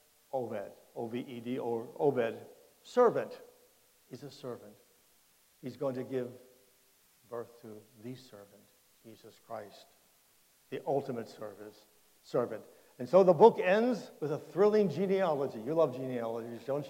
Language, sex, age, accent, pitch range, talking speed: English, male, 60-79, American, 120-160 Hz, 125 wpm